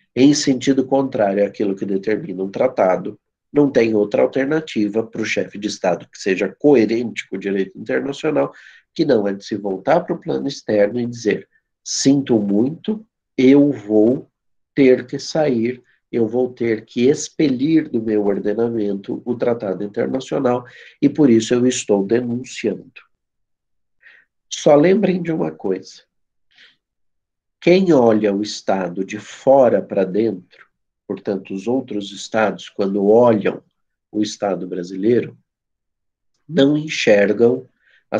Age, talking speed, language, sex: 50-69, 135 wpm, Portuguese, male